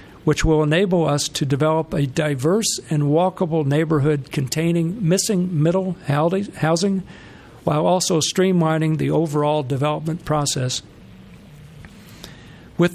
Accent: American